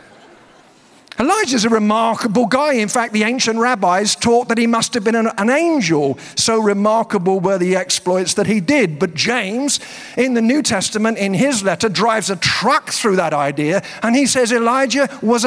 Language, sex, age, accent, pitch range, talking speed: English, male, 50-69, British, 180-240 Hz, 175 wpm